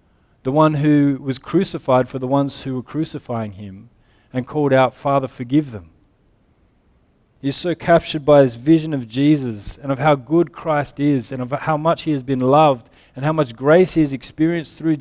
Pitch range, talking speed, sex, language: 115-150 Hz, 190 wpm, male, English